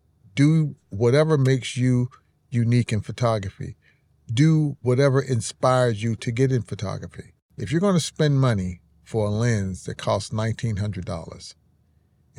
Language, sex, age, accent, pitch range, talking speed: English, male, 50-69, American, 105-135 Hz, 130 wpm